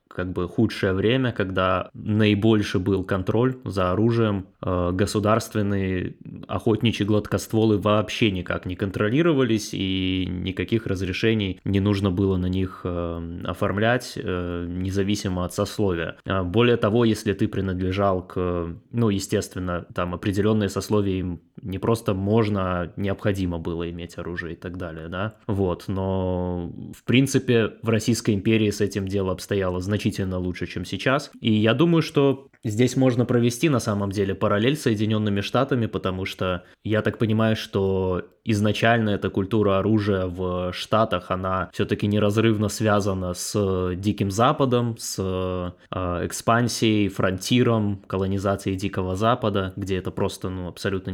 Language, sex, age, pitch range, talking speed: Russian, male, 20-39, 95-110 Hz, 130 wpm